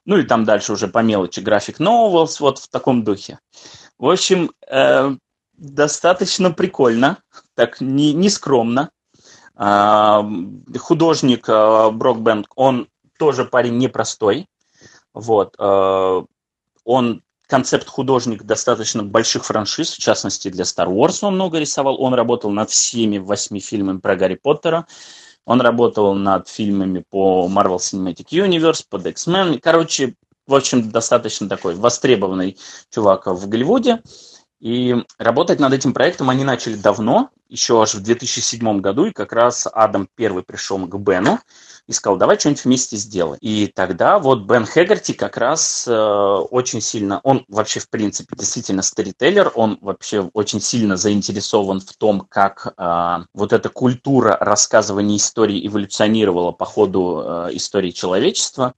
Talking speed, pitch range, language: 140 wpm, 100-135 Hz, Russian